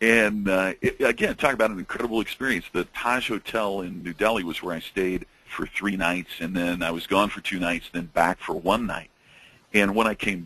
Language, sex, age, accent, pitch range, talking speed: English, male, 50-69, American, 100-160 Hz, 225 wpm